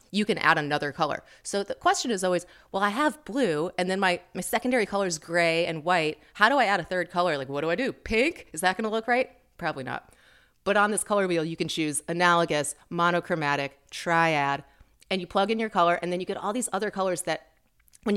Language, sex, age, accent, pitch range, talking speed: English, female, 30-49, American, 160-205 Hz, 240 wpm